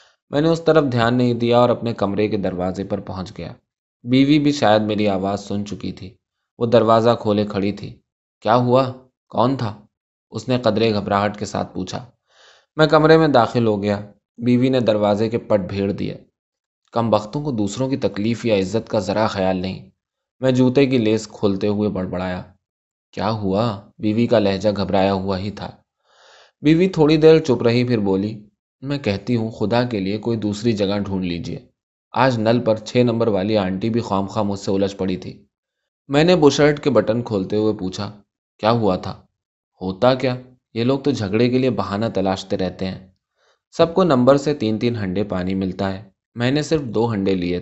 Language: Urdu